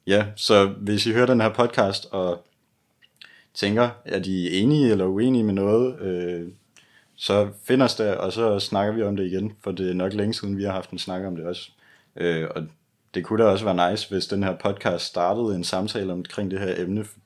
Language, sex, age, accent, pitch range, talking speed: Danish, male, 30-49, native, 90-110 Hz, 215 wpm